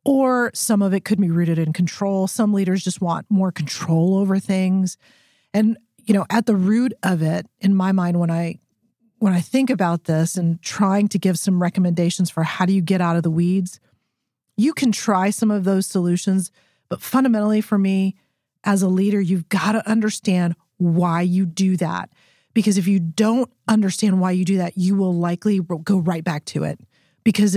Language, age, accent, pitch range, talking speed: English, 40-59, American, 175-215 Hz, 195 wpm